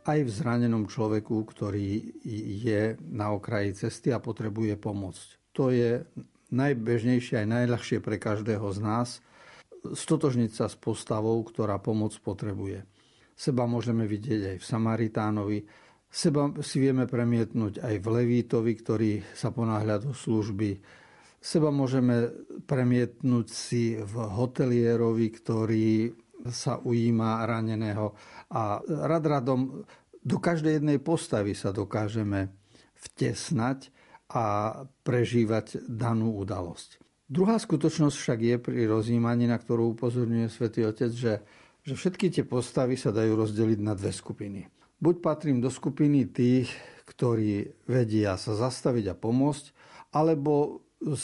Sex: male